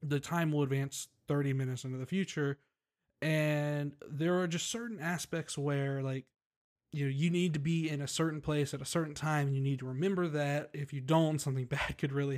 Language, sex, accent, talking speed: English, male, American, 215 wpm